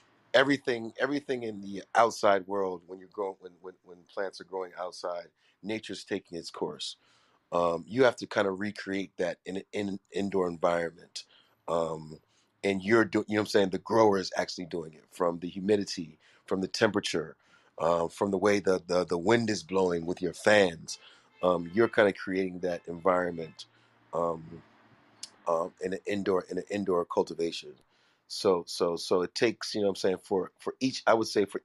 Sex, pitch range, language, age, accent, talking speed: male, 85-105 Hz, English, 30-49, American, 190 wpm